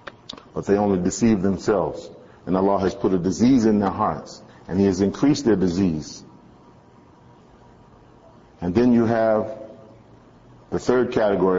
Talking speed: 140 wpm